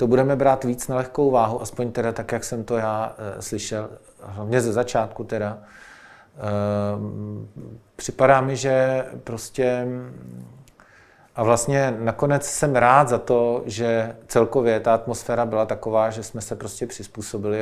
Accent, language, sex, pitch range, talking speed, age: native, Czech, male, 105-120 Hz, 145 wpm, 40-59